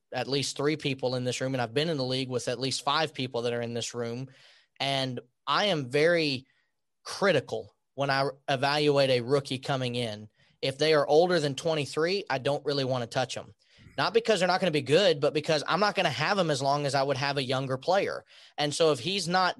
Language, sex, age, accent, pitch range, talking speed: English, male, 30-49, American, 135-175 Hz, 240 wpm